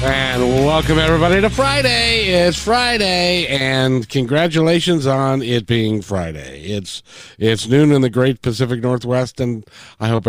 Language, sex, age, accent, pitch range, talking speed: English, male, 50-69, American, 110-175 Hz, 140 wpm